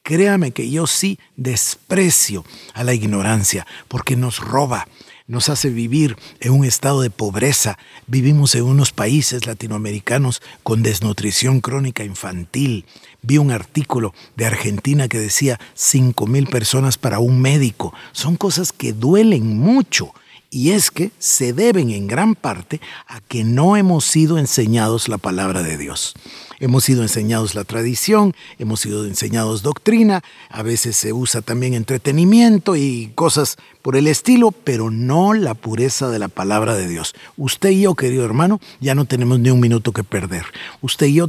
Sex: male